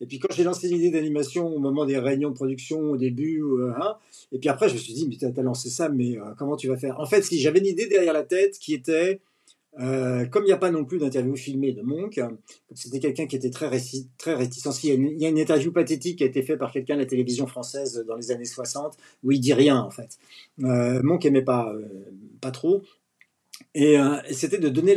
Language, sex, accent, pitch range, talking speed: French, male, French, 125-160 Hz, 255 wpm